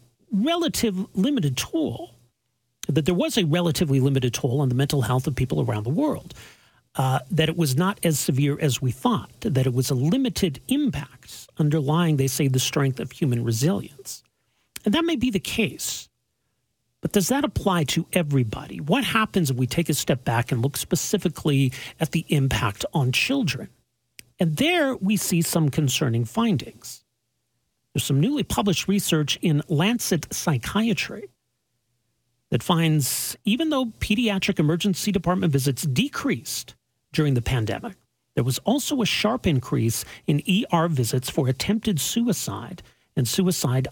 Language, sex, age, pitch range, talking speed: English, male, 40-59, 130-195 Hz, 155 wpm